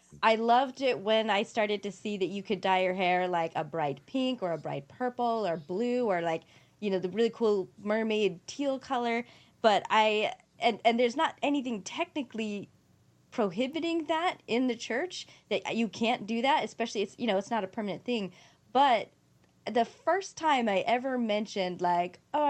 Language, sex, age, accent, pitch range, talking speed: English, female, 20-39, American, 185-235 Hz, 185 wpm